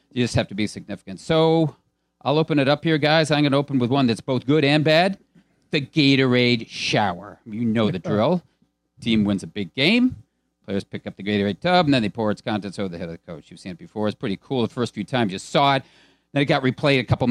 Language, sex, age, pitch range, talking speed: English, male, 40-59, 110-160 Hz, 255 wpm